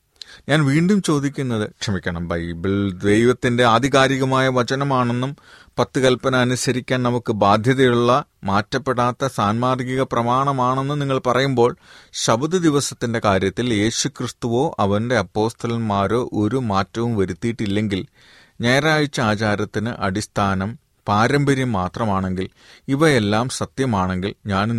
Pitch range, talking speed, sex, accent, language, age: 100-130 Hz, 85 wpm, male, native, Malayalam, 30-49